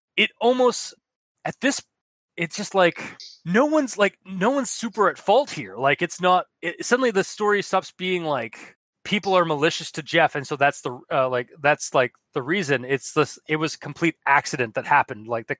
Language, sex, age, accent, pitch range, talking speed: English, male, 20-39, American, 145-190 Hz, 200 wpm